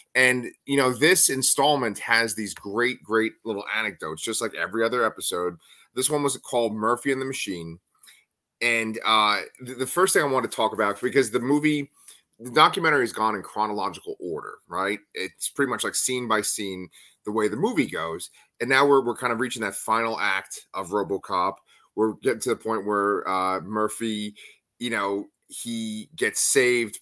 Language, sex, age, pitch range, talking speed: English, male, 30-49, 105-135 Hz, 180 wpm